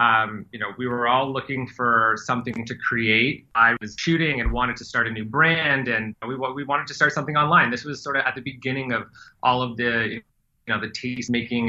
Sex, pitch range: male, 115-140 Hz